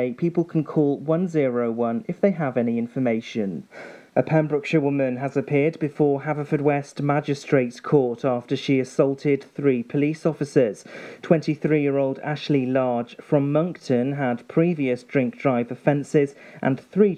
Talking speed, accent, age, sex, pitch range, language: 125 wpm, British, 40-59, male, 130-155 Hz, English